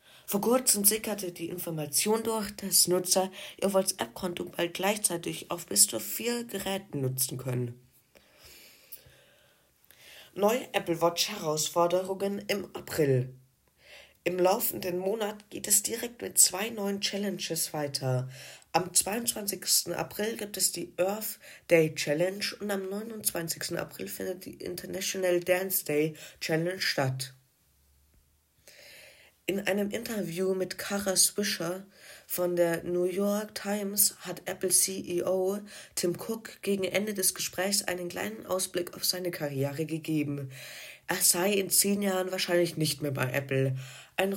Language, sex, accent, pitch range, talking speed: German, female, German, 160-200 Hz, 125 wpm